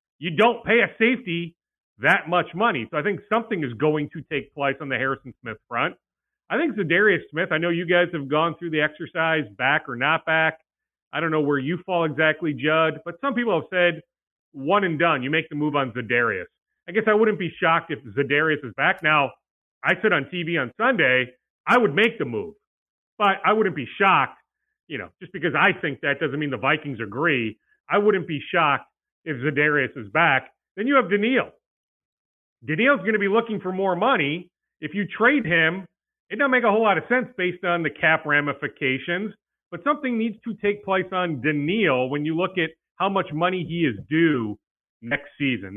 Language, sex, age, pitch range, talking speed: English, male, 40-59, 150-210 Hz, 205 wpm